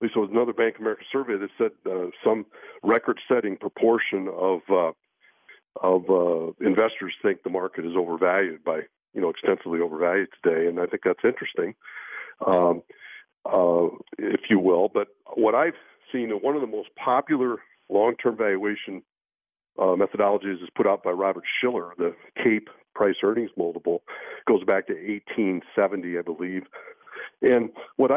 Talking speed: 155 wpm